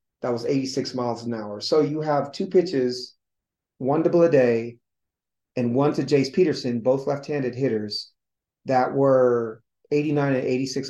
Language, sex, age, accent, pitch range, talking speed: English, male, 40-59, American, 115-135 Hz, 155 wpm